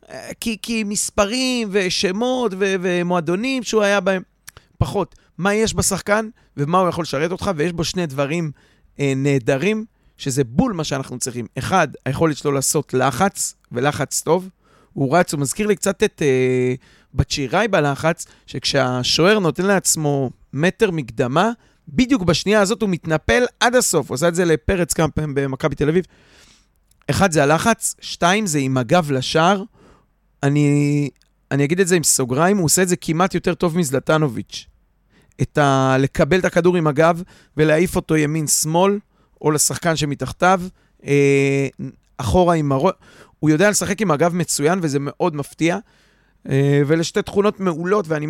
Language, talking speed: Hebrew, 150 wpm